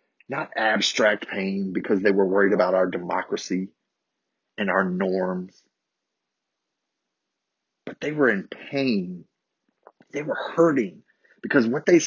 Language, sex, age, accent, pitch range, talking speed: English, male, 30-49, American, 105-145 Hz, 120 wpm